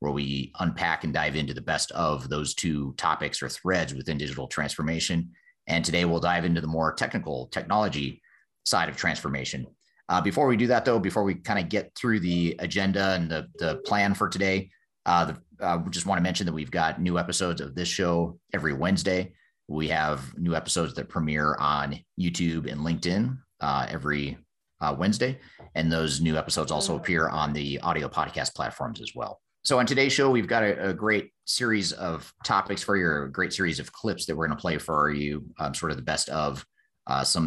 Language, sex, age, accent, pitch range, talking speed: English, male, 30-49, American, 75-90 Hz, 205 wpm